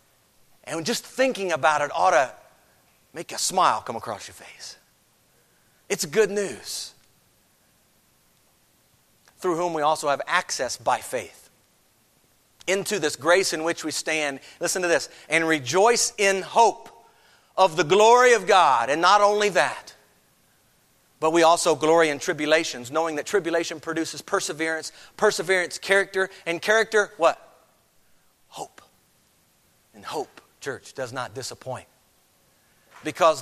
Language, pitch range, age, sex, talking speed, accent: English, 150-205 Hz, 40-59, male, 130 wpm, American